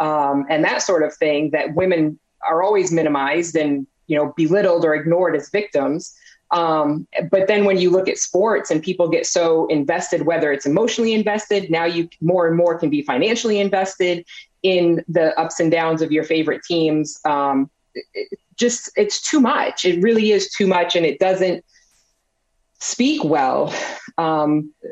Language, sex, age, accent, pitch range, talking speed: English, female, 20-39, American, 155-195 Hz, 175 wpm